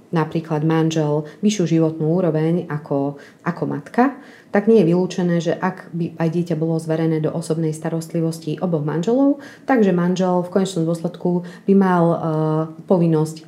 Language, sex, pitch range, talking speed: English, female, 155-175 Hz, 140 wpm